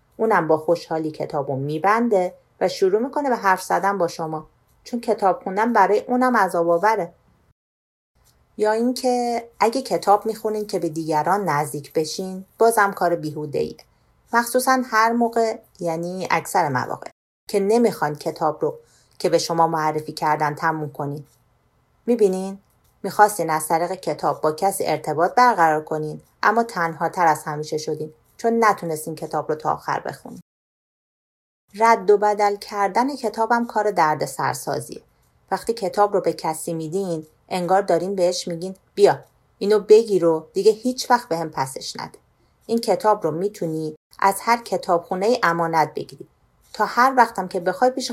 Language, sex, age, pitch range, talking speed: Persian, female, 40-59, 160-215 Hz, 150 wpm